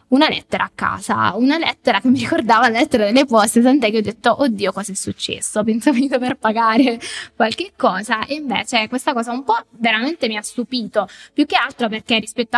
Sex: female